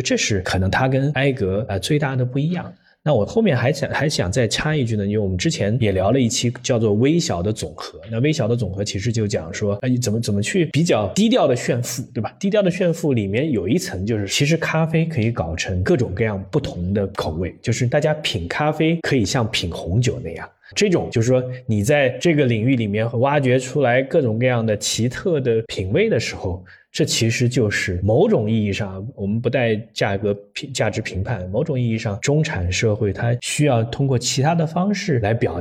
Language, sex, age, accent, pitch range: Chinese, male, 20-39, native, 100-135 Hz